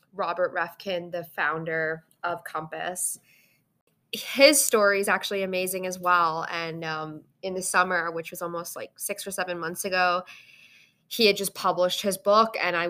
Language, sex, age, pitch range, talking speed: English, female, 20-39, 165-195 Hz, 165 wpm